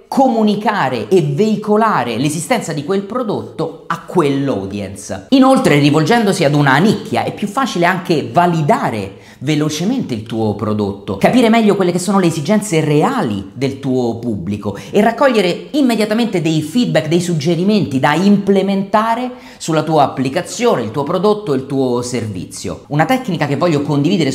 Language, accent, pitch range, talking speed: Italian, native, 125-195 Hz, 140 wpm